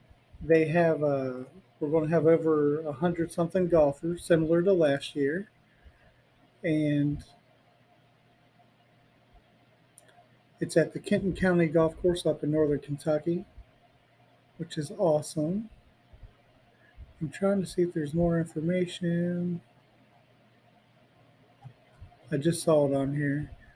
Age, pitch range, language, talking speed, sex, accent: 50-69, 135-170 Hz, English, 110 wpm, male, American